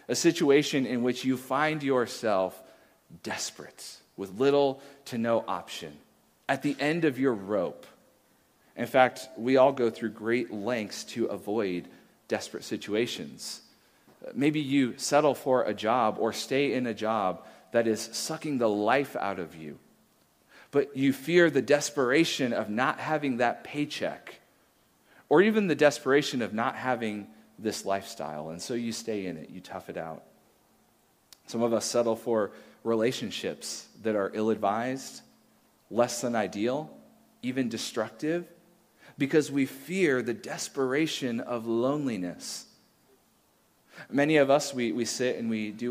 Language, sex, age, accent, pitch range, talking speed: English, male, 40-59, American, 115-140 Hz, 140 wpm